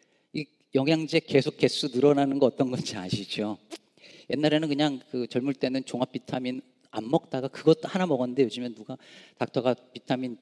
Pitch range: 120-155 Hz